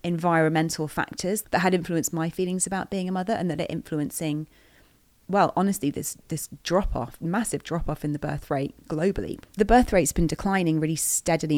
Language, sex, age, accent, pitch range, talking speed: English, female, 30-49, British, 150-170 Hz, 175 wpm